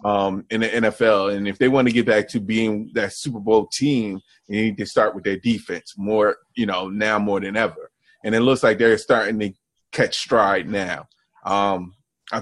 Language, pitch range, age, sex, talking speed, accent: English, 105-130 Hz, 20-39, male, 210 wpm, American